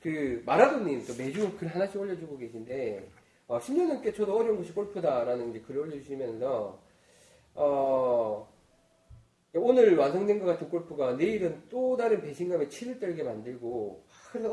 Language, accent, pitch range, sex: Korean, native, 175-290 Hz, male